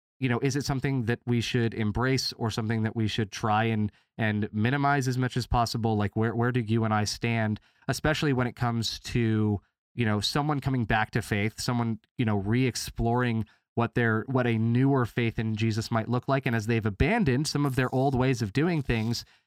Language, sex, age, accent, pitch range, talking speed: English, male, 20-39, American, 110-135 Hz, 215 wpm